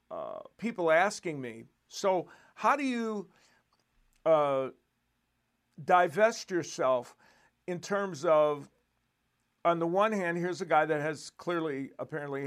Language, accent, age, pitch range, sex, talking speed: English, American, 50-69, 145-200 Hz, male, 120 wpm